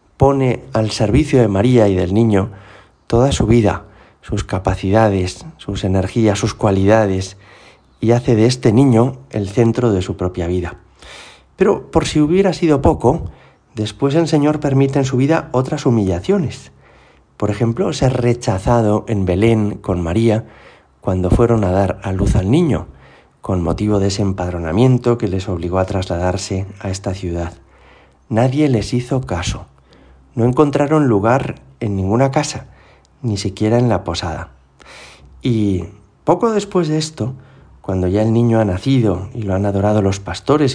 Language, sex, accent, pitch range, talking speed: Spanish, male, Spanish, 95-130 Hz, 155 wpm